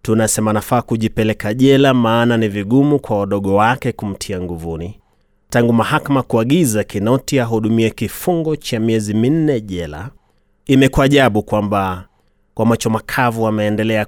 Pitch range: 100-125 Hz